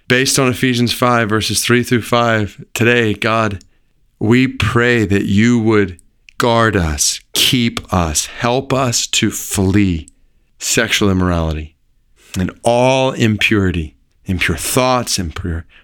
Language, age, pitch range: English, 40-59, 95-125 Hz